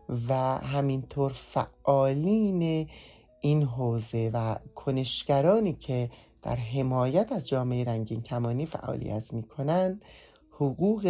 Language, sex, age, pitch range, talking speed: English, male, 30-49, 120-150 Hz, 95 wpm